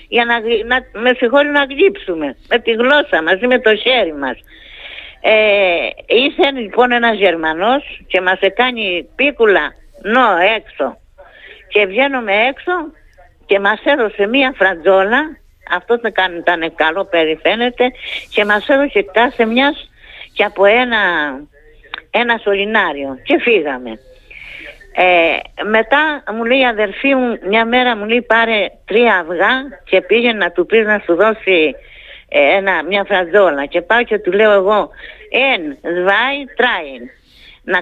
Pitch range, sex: 190-255 Hz, female